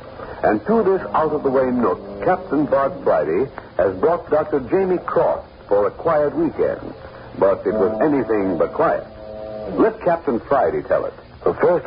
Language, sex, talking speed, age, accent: English, male, 150 wpm, 60-79, American